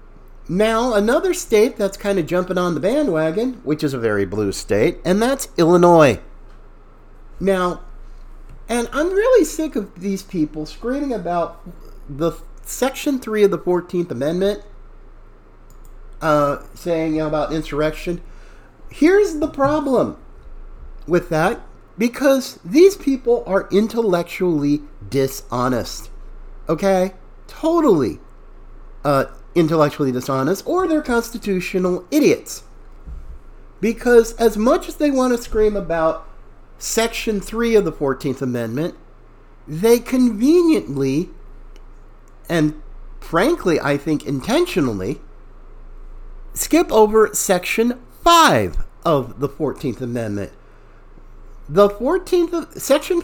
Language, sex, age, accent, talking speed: English, male, 50-69, American, 110 wpm